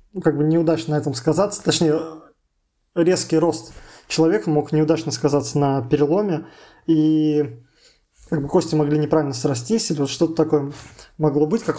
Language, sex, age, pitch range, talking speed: Russian, male, 20-39, 150-165 Hz, 150 wpm